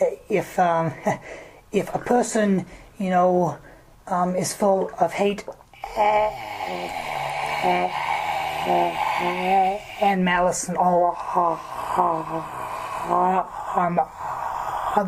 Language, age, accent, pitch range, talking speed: English, 30-49, American, 165-210 Hz, 70 wpm